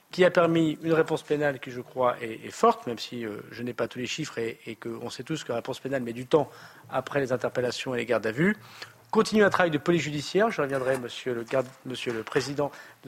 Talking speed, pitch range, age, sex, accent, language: 255 wpm, 125-155 Hz, 40-59, male, French, French